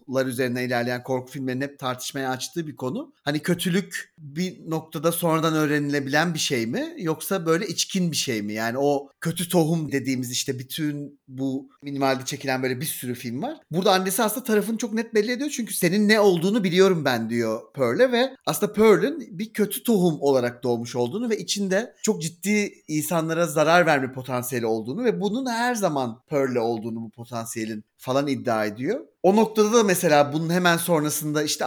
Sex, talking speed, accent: male, 175 wpm, native